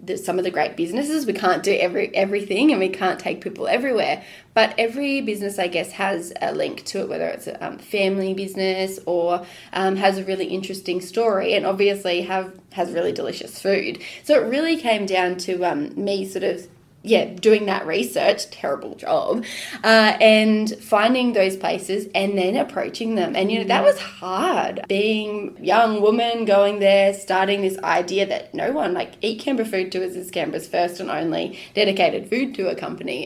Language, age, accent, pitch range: English, 20-39, Australian, 190-230 Hz